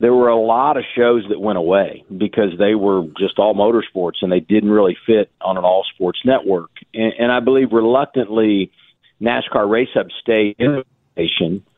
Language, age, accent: English, 50-69, American